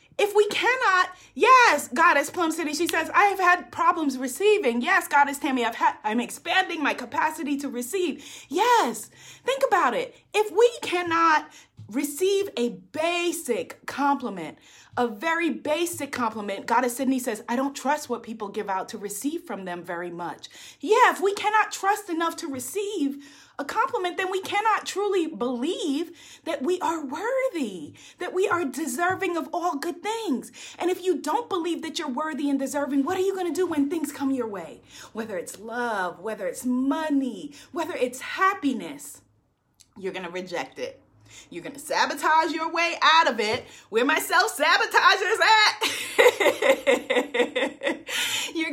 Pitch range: 250-375 Hz